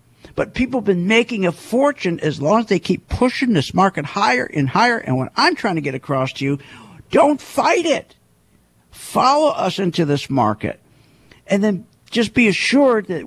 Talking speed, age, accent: 185 wpm, 50-69, American